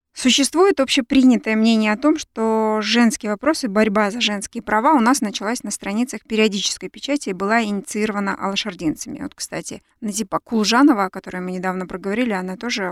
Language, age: Russian, 20-39